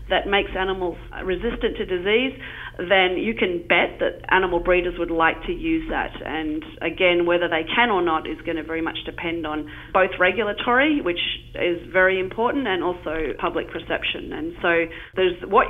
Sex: female